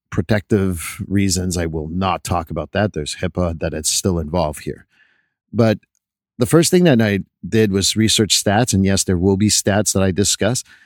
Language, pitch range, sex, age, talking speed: English, 95-120 Hz, male, 50-69, 190 wpm